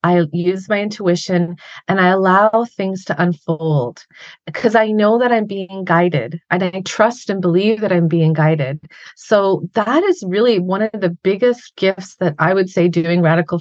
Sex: female